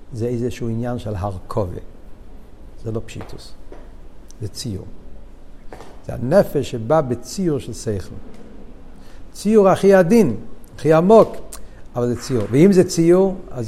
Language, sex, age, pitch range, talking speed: Hebrew, male, 60-79, 120-170 Hz, 125 wpm